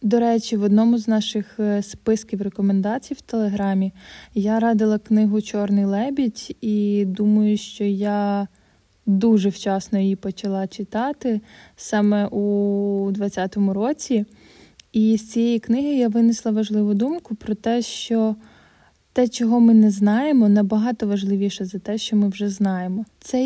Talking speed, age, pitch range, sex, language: 135 wpm, 20-39, 205-225 Hz, female, Ukrainian